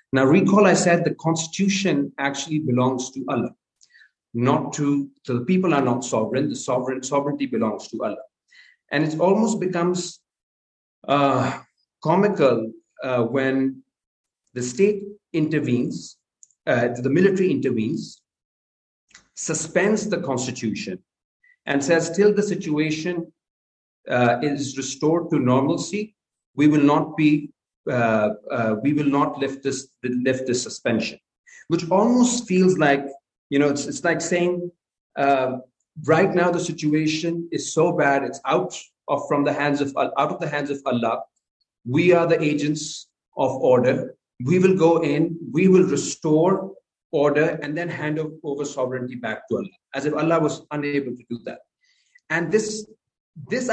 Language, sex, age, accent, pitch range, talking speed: English, male, 50-69, Indian, 135-175 Hz, 145 wpm